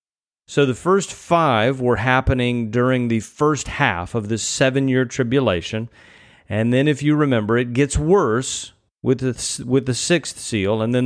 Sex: male